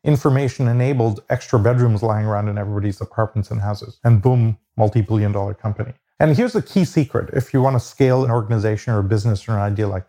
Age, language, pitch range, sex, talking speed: 40-59, English, 110-130 Hz, male, 210 wpm